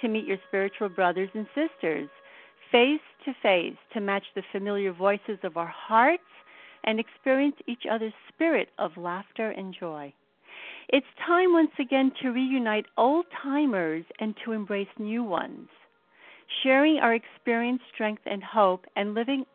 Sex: female